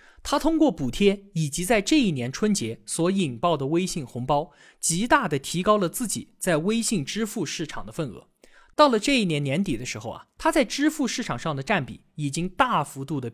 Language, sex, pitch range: Chinese, male, 150-240 Hz